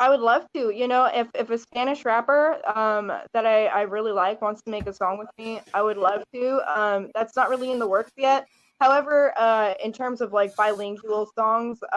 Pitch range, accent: 195-230 Hz, American